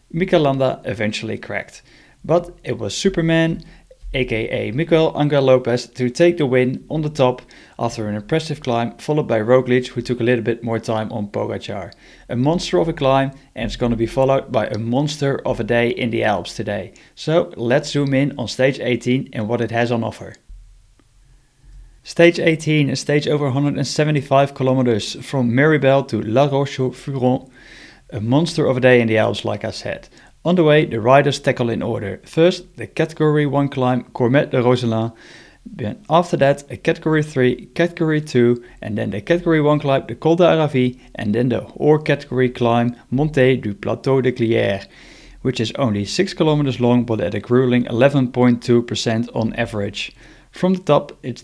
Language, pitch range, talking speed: English, 115-150 Hz, 175 wpm